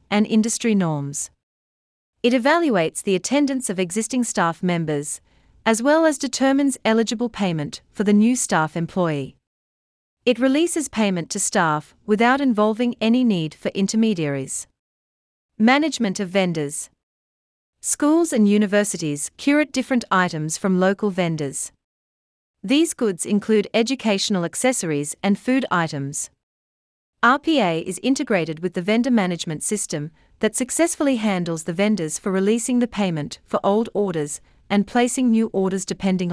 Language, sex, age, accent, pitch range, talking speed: English, female, 40-59, Australian, 165-240 Hz, 130 wpm